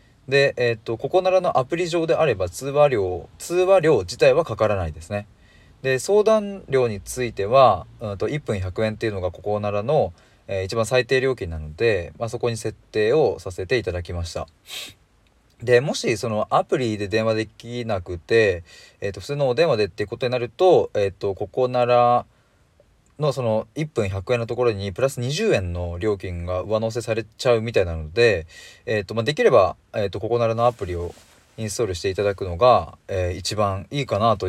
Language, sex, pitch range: Japanese, male, 95-130 Hz